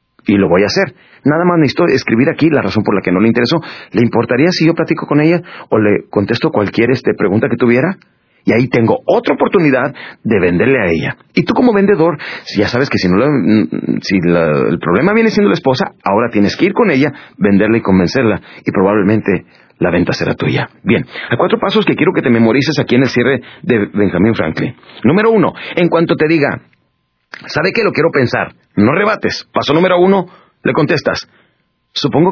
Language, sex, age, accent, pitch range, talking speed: Spanish, male, 40-59, Mexican, 105-160 Hz, 205 wpm